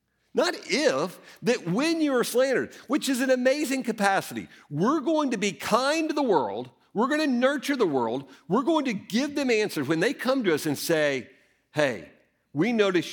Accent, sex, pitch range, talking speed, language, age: American, male, 140-215 Hz, 190 wpm, English, 50-69